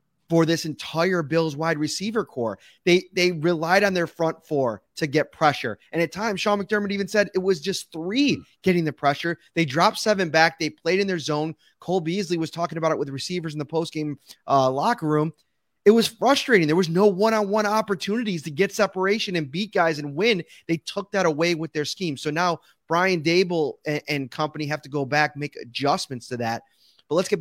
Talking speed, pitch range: 210 wpm, 140-190 Hz